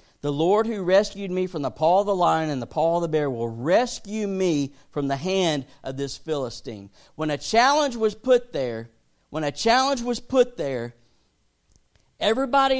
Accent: American